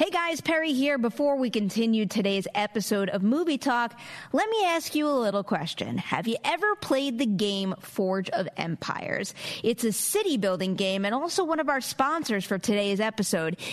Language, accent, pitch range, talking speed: English, American, 205-300 Hz, 185 wpm